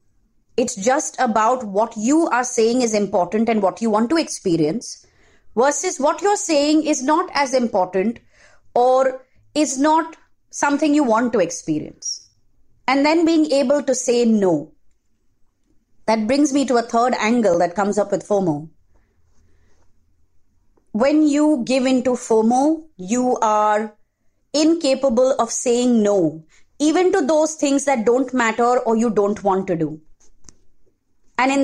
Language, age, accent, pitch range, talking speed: English, 30-49, Indian, 205-280 Hz, 145 wpm